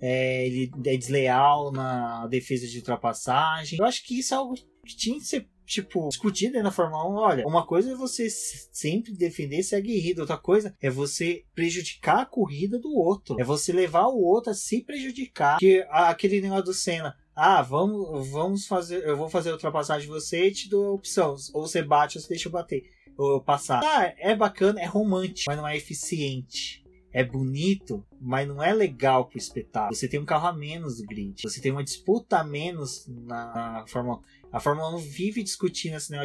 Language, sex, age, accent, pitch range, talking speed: Portuguese, male, 20-39, Brazilian, 140-195 Hz, 205 wpm